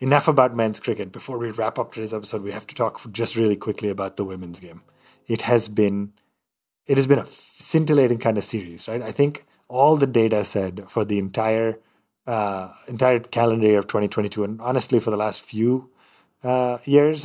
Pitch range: 105-125 Hz